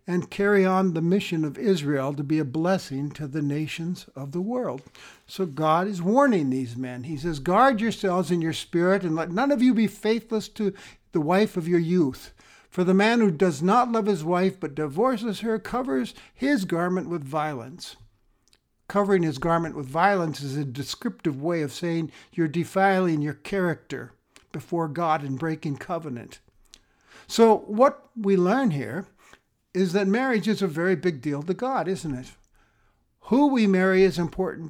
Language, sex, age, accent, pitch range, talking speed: English, male, 60-79, American, 150-200 Hz, 175 wpm